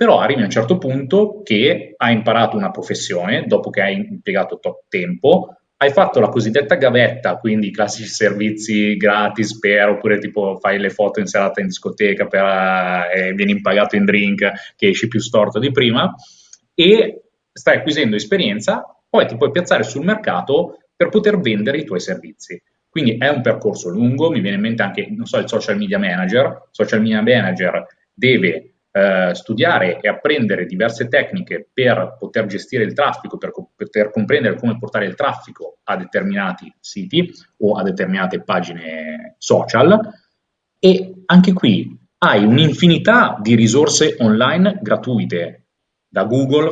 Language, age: Italian, 30-49